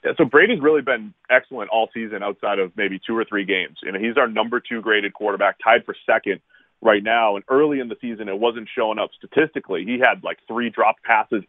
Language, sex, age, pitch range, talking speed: English, male, 30-49, 115-145 Hz, 230 wpm